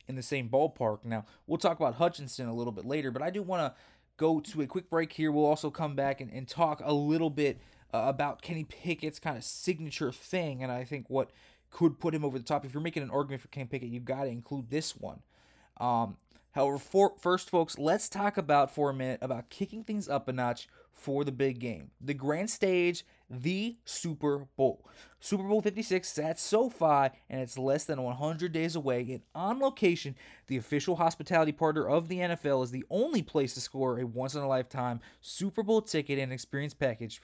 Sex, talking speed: male, 210 wpm